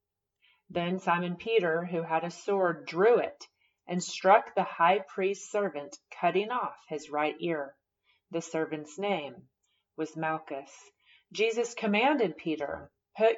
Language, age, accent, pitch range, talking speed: English, 30-49, American, 165-205 Hz, 130 wpm